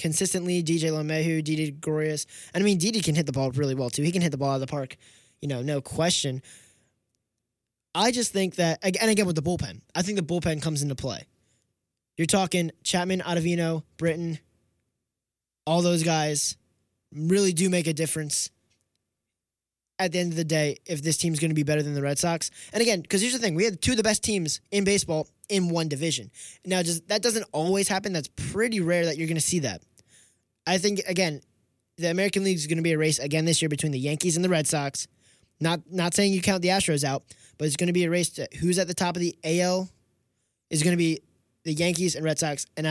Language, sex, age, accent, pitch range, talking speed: English, male, 20-39, American, 140-185 Hz, 230 wpm